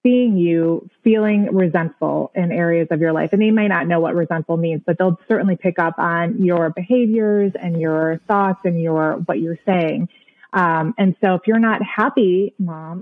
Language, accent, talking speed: English, American, 190 wpm